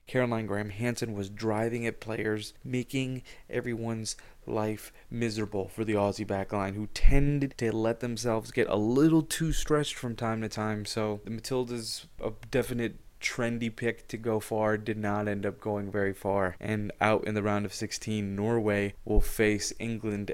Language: English